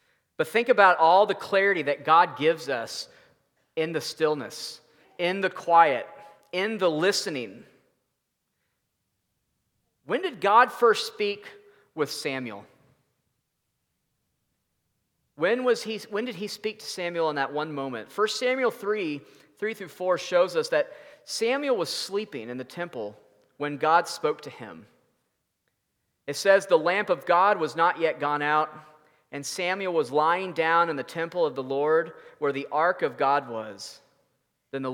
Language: English